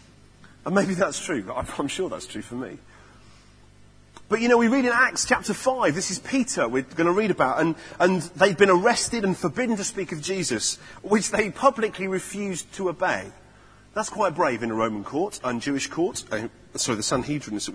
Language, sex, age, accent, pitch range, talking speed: English, male, 40-59, British, 125-190 Hz, 205 wpm